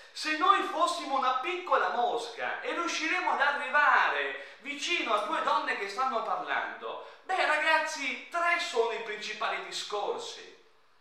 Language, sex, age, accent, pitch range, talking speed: Italian, male, 40-59, native, 235-330 Hz, 130 wpm